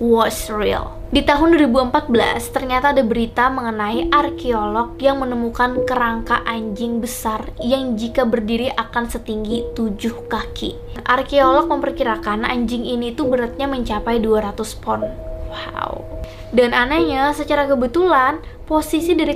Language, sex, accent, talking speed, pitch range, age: Indonesian, female, native, 120 wpm, 220-260 Hz, 20-39